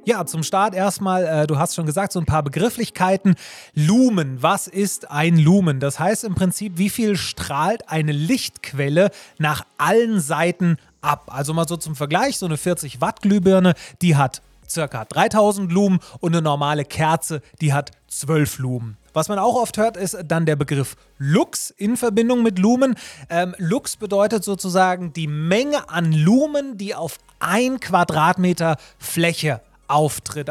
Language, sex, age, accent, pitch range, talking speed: German, male, 30-49, German, 150-195 Hz, 155 wpm